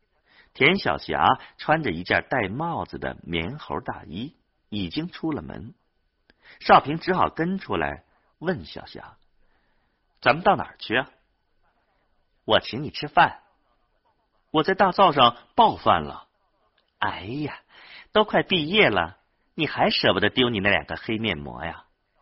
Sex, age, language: male, 50-69, Chinese